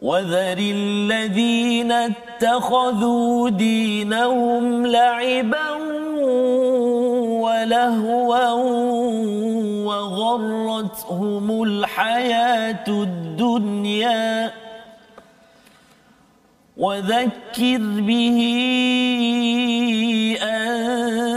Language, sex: Malayalam, male